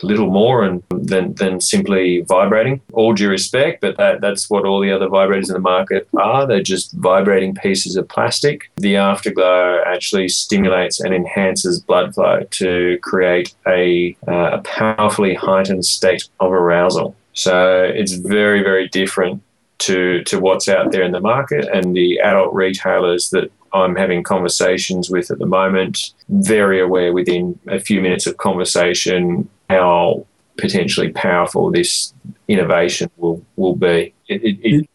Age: 20-39